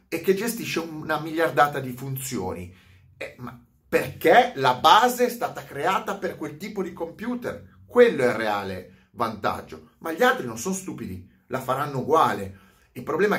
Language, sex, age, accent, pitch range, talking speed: Italian, male, 30-49, native, 115-160 Hz, 160 wpm